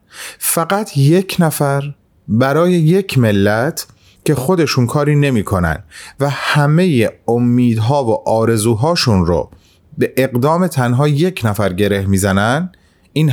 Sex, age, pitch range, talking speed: male, 30-49, 95-145 Hz, 110 wpm